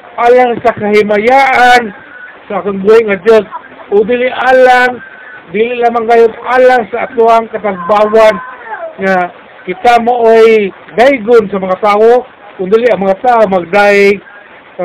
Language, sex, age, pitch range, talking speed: Filipino, male, 50-69, 205-245 Hz, 120 wpm